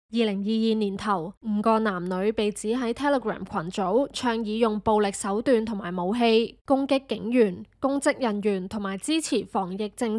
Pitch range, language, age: 205-245 Hz, Chinese, 20-39